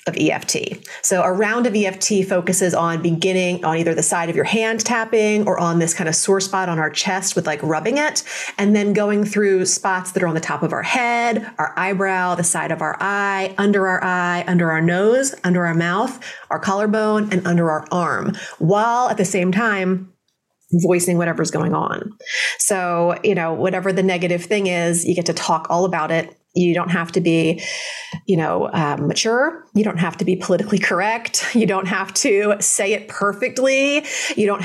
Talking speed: 200 wpm